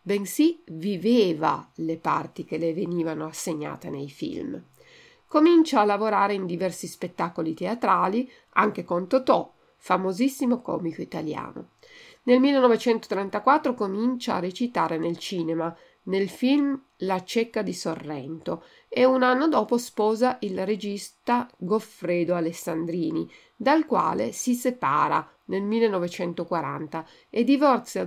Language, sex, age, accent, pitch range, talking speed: Italian, female, 50-69, native, 170-250 Hz, 115 wpm